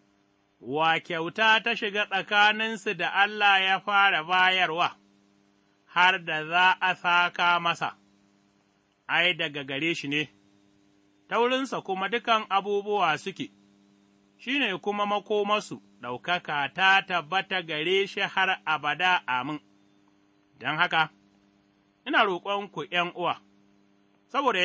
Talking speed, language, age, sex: 100 wpm, English, 30-49, male